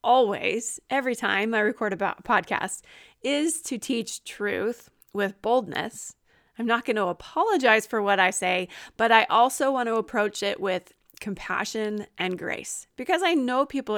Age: 30-49